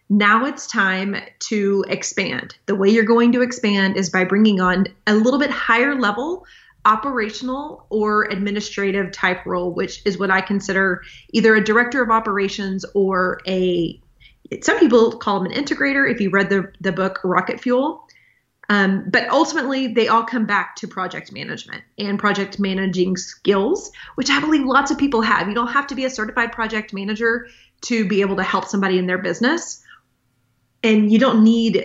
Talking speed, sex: 175 wpm, female